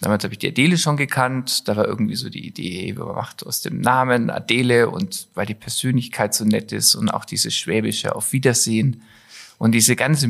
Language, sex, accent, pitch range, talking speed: German, male, German, 110-140 Hz, 205 wpm